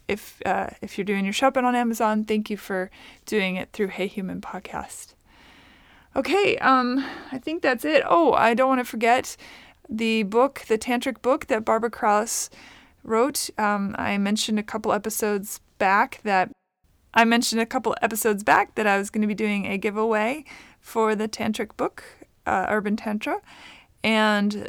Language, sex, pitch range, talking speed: English, female, 210-250 Hz, 170 wpm